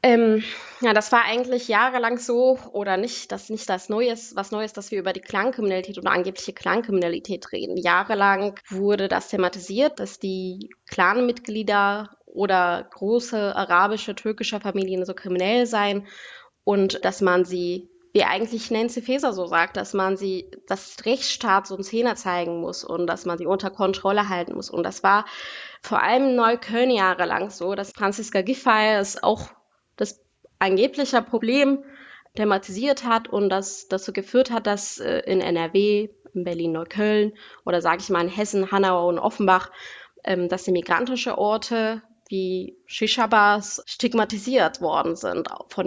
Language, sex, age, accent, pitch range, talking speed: German, female, 20-39, German, 190-230 Hz, 155 wpm